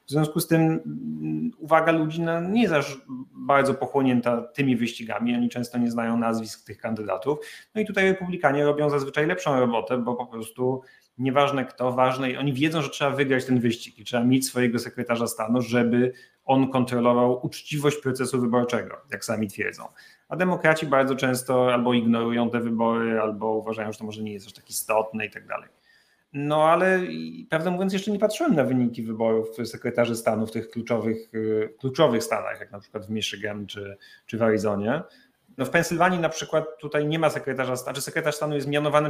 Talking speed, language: 185 wpm, Polish